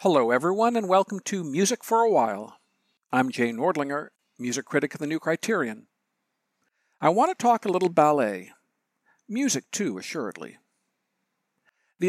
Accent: American